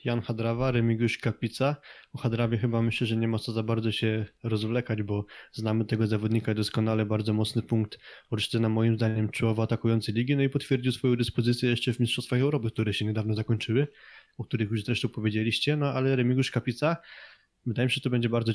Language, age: Polish, 20-39